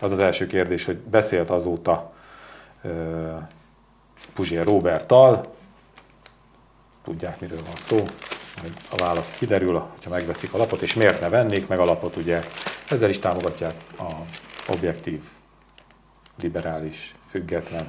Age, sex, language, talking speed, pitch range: 40-59, male, Hungarian, 125 wpm, 90-100 Hz